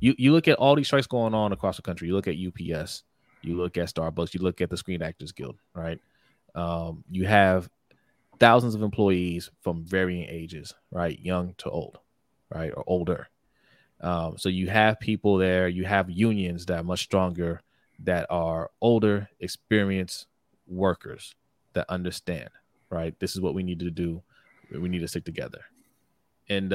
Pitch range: 90-110 Hz